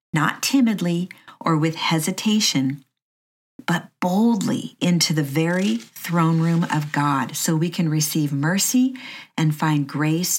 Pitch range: 150-205 Hz